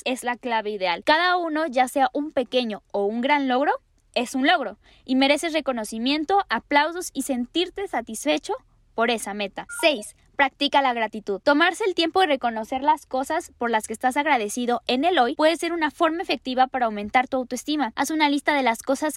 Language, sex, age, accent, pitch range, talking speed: Spanish, female, 10-29, Mexican, 240-310 Hz, 190 wpm